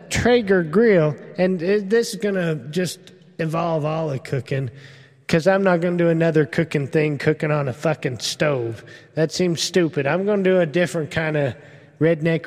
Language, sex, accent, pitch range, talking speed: English, male, American, 155-195 Hz, 185 wpm